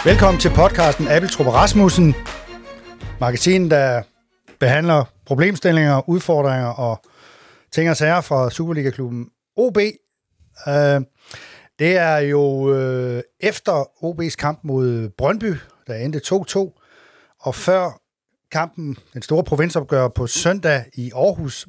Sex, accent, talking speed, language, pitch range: male, native, 105 wpm, Danish, 125-165 Hz